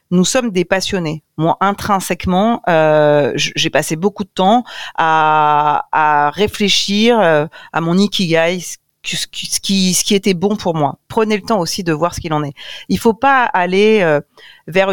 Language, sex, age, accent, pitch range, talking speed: French, female, 40-59, French, 160-205 Hz, 175 wpm